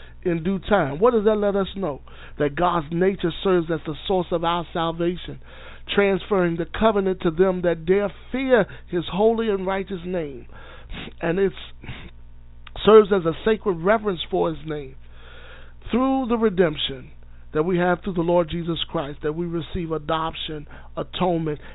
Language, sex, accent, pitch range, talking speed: English, male, American, 150-195 Hz, 160 wpm